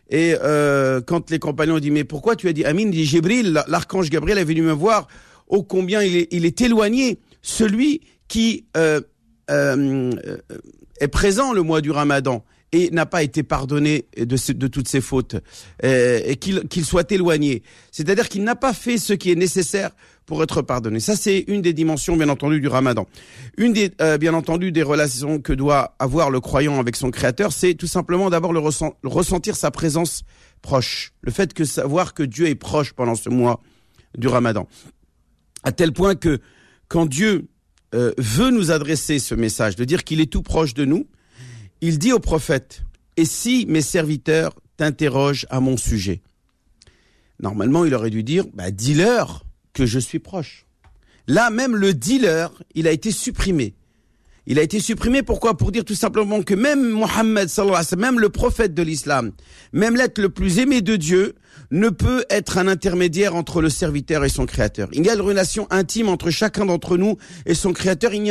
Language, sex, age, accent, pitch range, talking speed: French, male, 50-69, French, 135-195 Hz, 190 wpm